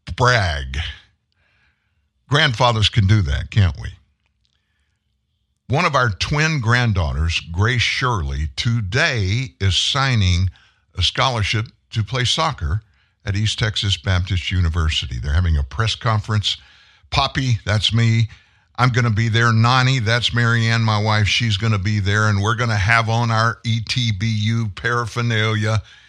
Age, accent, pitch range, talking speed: 60-79, American, 90-115 Hz, 135 wpm